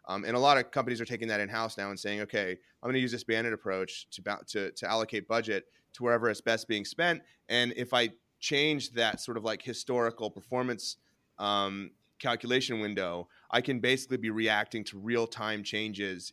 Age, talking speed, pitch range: 30-49, 195 wpm, 105-125 Hz